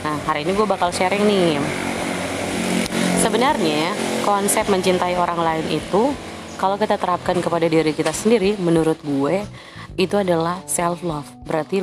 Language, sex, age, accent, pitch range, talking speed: Indonesian, female, 20-39, native, 155-190 Hz, 135 wpm